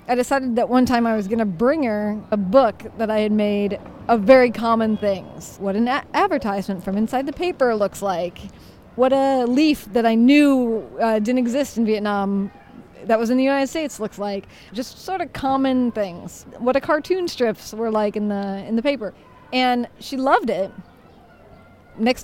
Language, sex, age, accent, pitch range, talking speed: English, female, 30-49, American, 215-270 Hz, 185 wpm